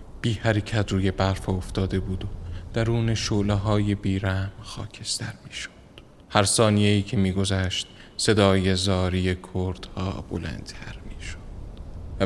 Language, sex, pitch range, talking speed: Persian, male, 95-105 Hz, 120 wpm